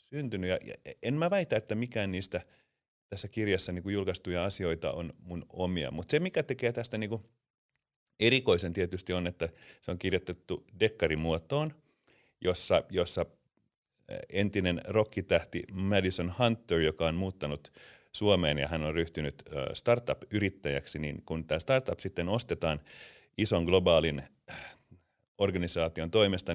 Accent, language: native, Finnish